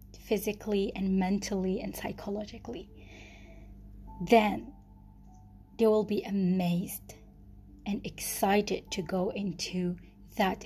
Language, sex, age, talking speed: English, female, 20-39, 90 wpm